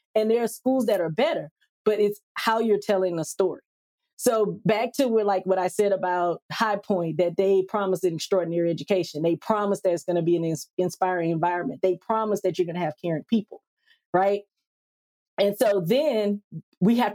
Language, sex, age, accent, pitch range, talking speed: English, female, 30-49, American, 175-215 Hz, 200 wpm